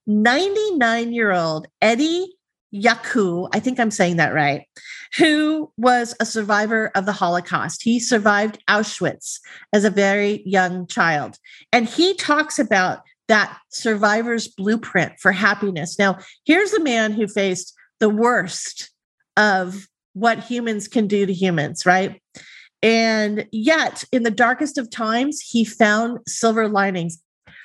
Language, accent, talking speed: English, American, 130 wpm